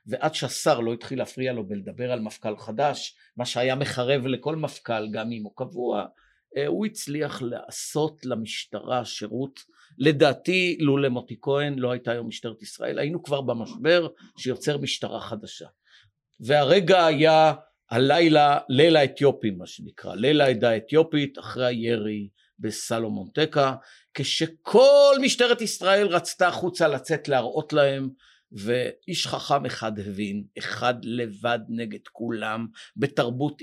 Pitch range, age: 115-150 Hz, 50-69